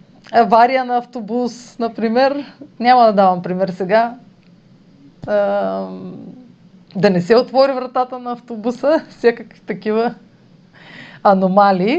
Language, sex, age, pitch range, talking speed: Bulgarian, female, 30-49, 185-235 Hz, 95 wpm